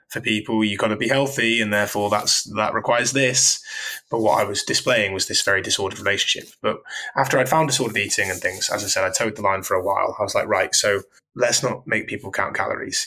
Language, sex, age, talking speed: English, male, 20-39, 240 wpm